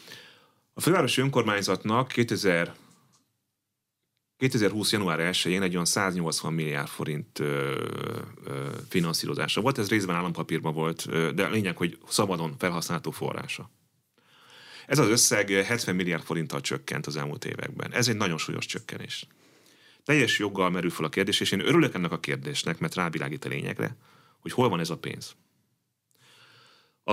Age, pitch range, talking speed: 30-49, 85-115 Hz, 140 wpm